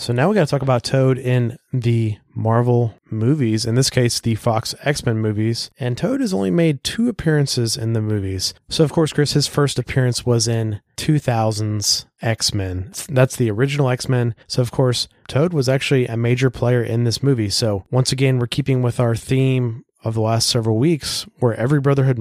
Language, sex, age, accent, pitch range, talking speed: English, male, 30-49, American, 105-130 Hz, 195 wpm